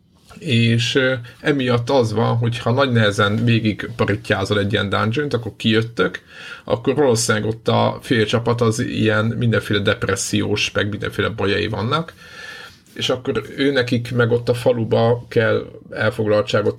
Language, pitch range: Hungarian, 105-120 Hz